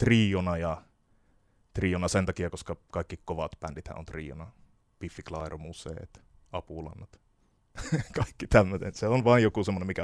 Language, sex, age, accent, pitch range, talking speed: Finnish, male, 20-39, native, 85-110 Hz, 135 wpm